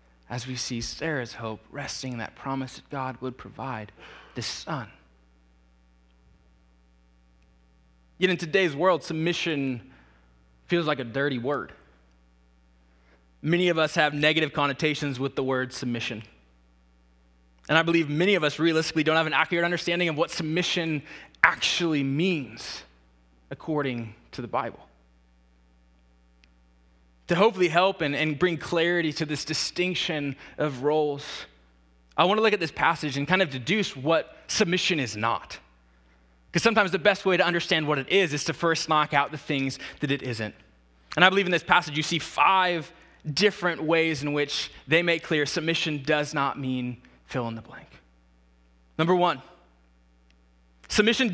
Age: 20-39